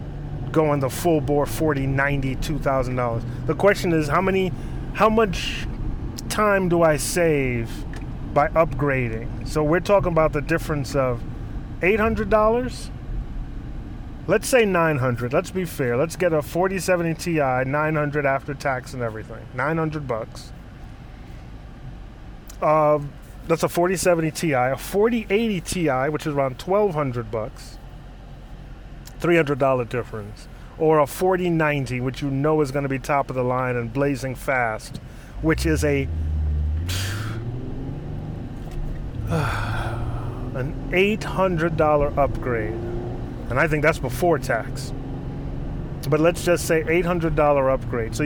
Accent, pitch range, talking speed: American, 125-165 Hz, 135 wpm